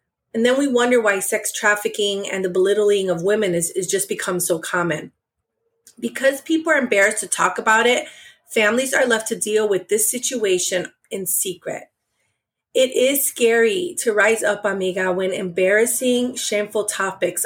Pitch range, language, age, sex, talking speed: 195-235 Hz, English, 30-49, female, 160 wpm